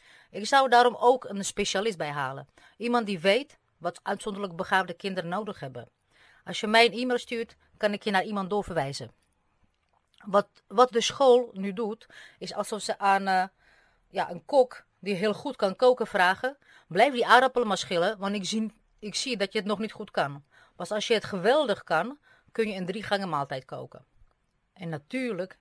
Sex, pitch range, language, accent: female, 170-225 Hz, Dutch, Dutch